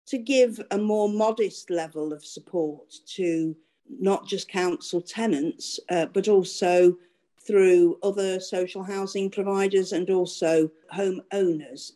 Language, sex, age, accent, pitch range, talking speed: English, female, 50-69, British, 170-200 Hz, 120 wpm